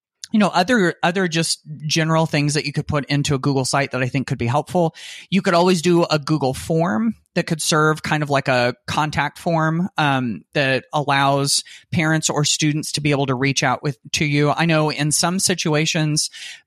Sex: male